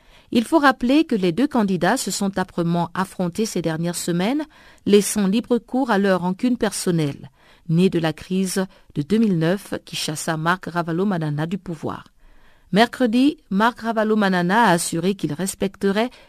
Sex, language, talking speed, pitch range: female, French, 145 wpm, 175-225 Hz